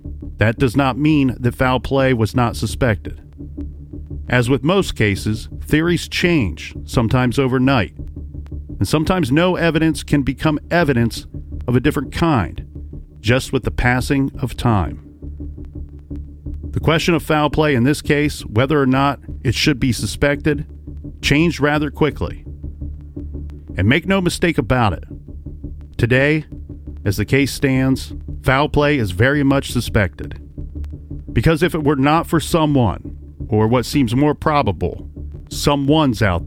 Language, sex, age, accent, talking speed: English, male, 40-59, American, 140 wpm